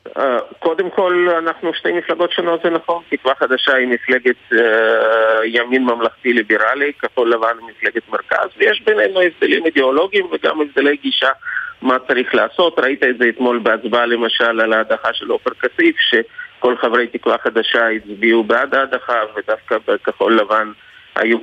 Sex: male